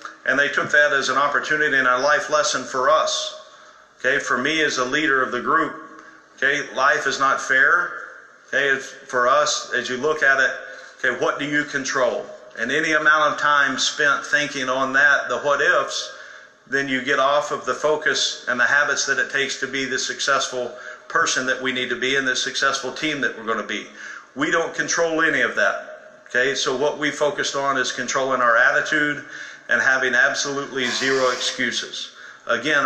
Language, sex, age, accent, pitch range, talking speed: English, male, 50-69, American, 130-150 Hz, 195 wpm